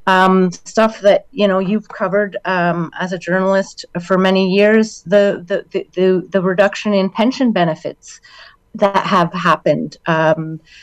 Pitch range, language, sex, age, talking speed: 170-200 Hz, English, female, 30-49, 145 wpm